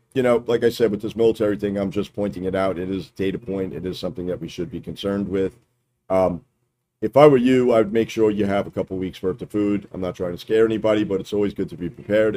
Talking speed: 285 wpm